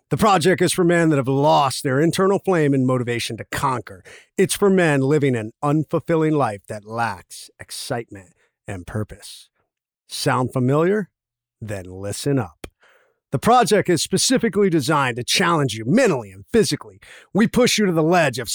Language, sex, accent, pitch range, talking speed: English, male, American, 120-180 Hz, 160 wpm